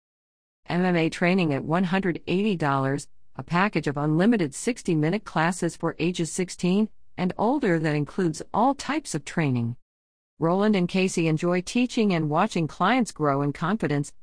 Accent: American